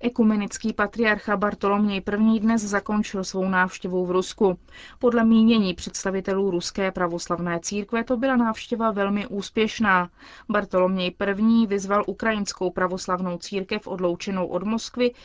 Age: 20-39